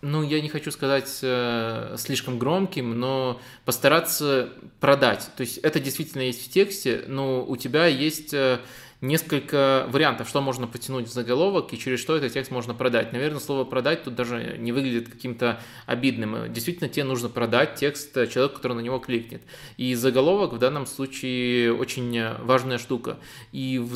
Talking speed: 165 wpm